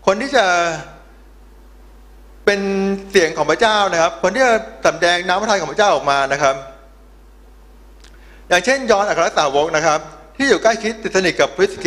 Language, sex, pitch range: Thai, male, 155-215 Hz